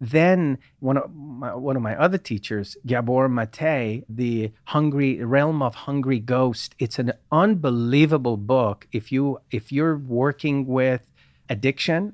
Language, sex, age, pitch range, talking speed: English, male, 40-59, 125-165 Hz, 125 wpm